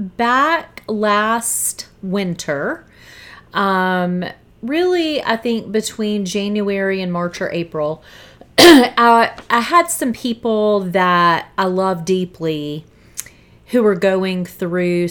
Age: 30-49